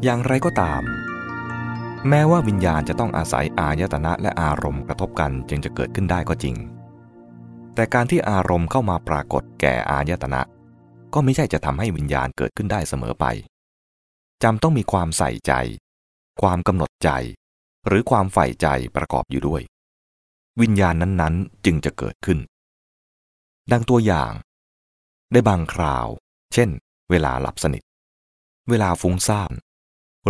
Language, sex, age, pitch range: English, male, 20-39, 70-105 Hz